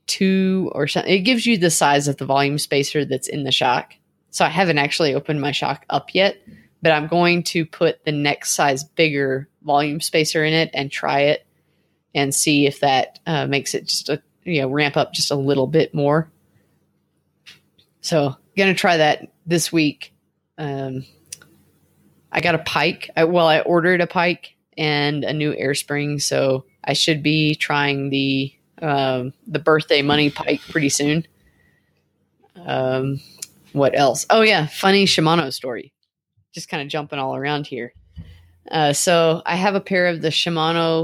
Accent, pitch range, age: American, 140-170 Hz, 20-39